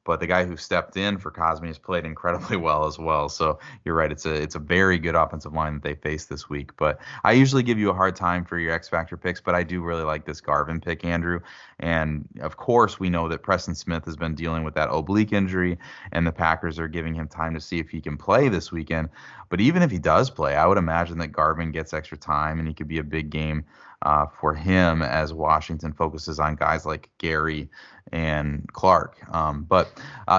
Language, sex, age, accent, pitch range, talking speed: English, male, 20-39, American, 80-95 Hz, 230 wpm